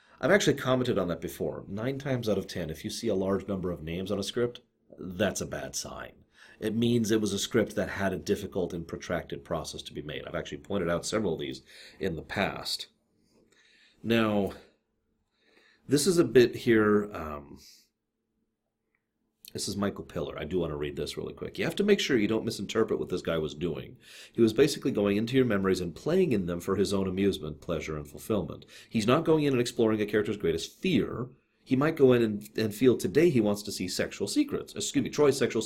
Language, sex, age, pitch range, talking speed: English, male, 40-59, 95-120 Hz, 220 wpm